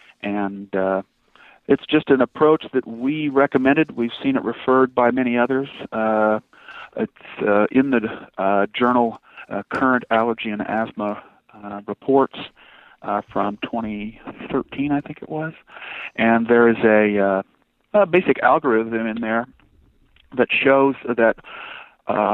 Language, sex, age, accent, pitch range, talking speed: English, male, 50-69, American, 105-125 Hz, 135 wpm